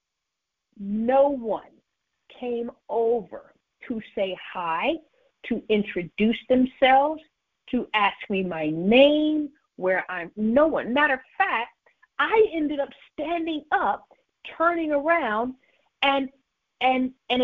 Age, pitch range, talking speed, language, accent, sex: 50-69, 245-330 Hz, 110 wpm, English, American, female